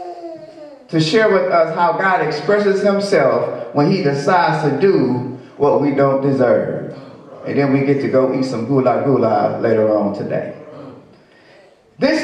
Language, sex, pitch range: English, male, 155-215 Hz